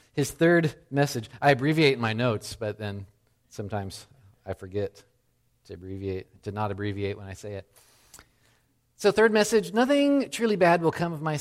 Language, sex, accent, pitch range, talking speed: English, male, American, 115-155 Hz, 170 wpm